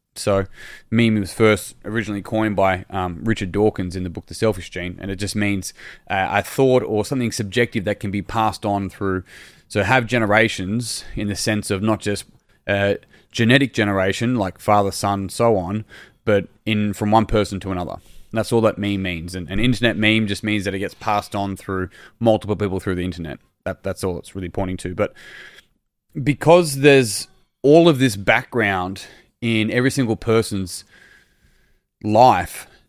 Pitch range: 100-125 Hz